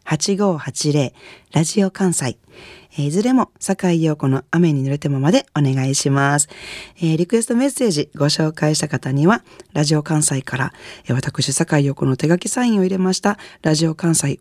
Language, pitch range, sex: Japanese, 140-185 Hz, female